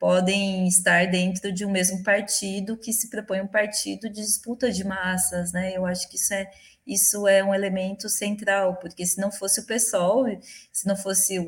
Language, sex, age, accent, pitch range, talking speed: Portuguese, female, 20-39, Brazilian, 180-215 Hz, 190 wpm